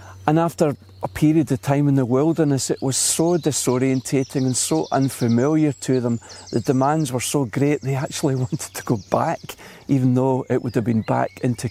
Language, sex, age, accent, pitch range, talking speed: English, male, 40-59, British, 115-140 Hz, 190 wpm